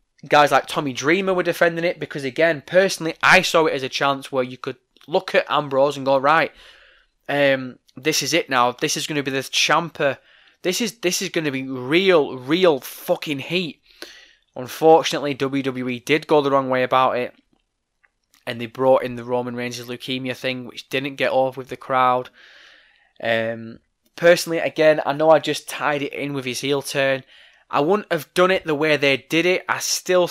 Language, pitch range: English, 130-165 Hz